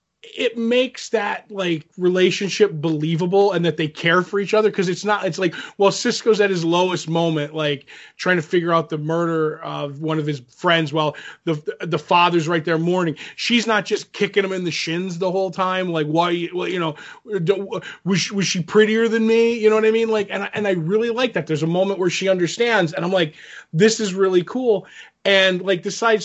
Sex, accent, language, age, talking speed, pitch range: male, American, English, 20-39, 215 wpm, 155-190 Hz